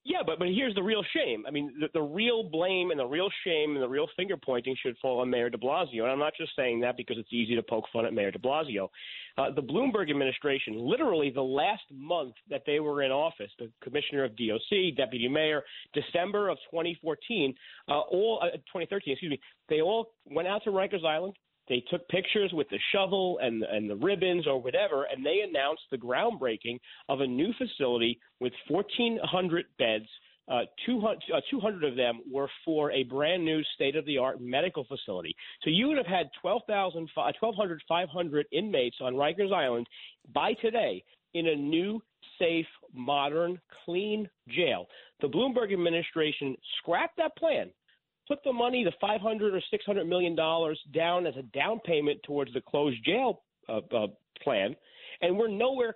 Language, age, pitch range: English, 40-59, 135-200 Hz